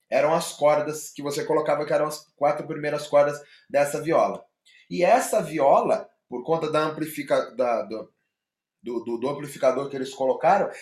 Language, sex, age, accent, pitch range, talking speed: Portuguese, male, 20-39, Brazilian, 155-200 Hz, 145 wpm